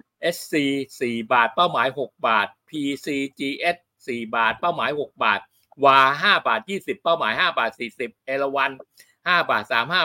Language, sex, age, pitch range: Thai, male, 60-79, 135-170 Hz